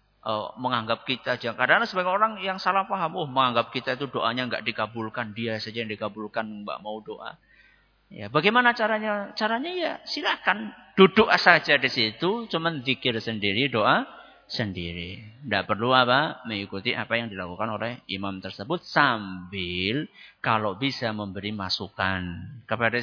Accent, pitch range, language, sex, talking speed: Indonesian, 105-160 Hz, English, male, 140 wpm